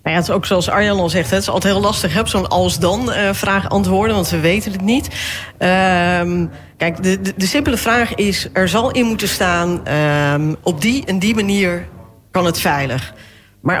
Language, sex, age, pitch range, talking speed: Dutch, female, 40-59, 165-205 Hz, 180 wpm